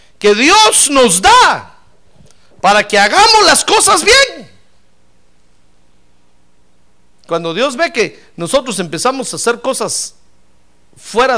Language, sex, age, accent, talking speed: Spanish, male, 50-69, Mexican, 105 wpm